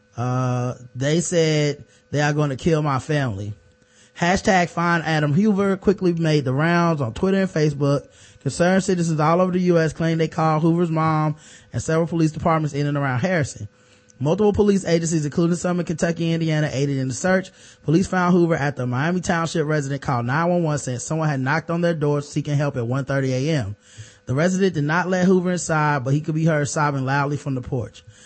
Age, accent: 20-39, American